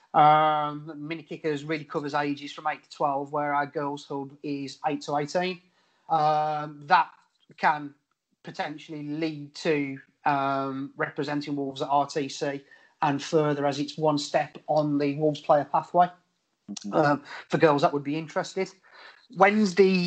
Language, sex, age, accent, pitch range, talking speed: English, male, 30-49, British, 140-155 Hz, 145 wpm